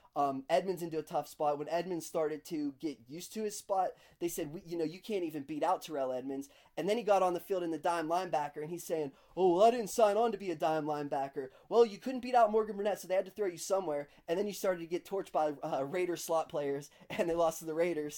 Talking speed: 275 wpm